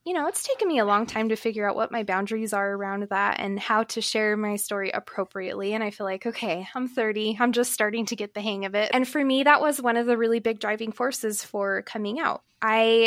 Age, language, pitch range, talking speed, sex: 20-39, English, 205-245 Hz, 255 wpm, female